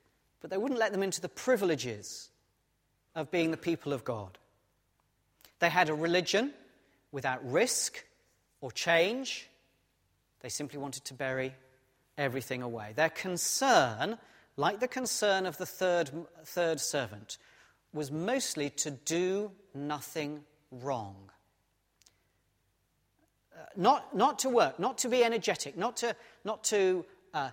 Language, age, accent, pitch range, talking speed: English, 40-59, British, 135-195 Hz, 130 wpm